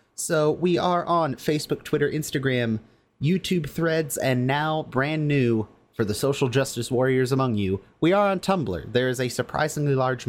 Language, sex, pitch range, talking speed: English, male, 115-145 Hz, 170 wpm